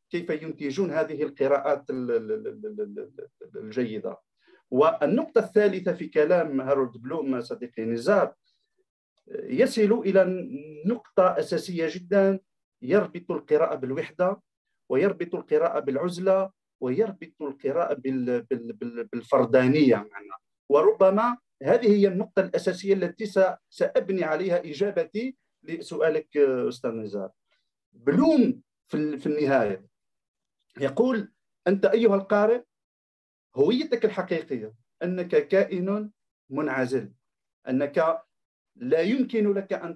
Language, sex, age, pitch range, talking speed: Arabic, male, 50-69, 155-220 Hz, 80 wpm